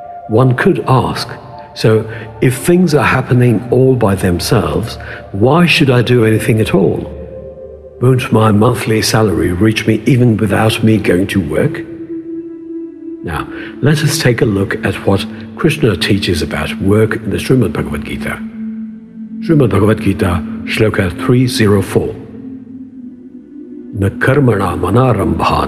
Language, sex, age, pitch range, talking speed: English, male, 60-79, 105-155 Hz, 120 wpm